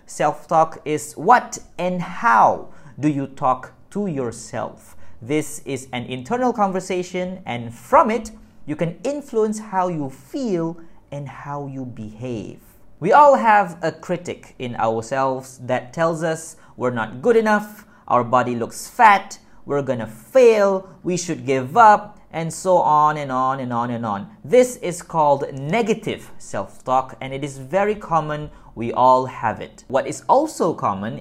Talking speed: 155 wpm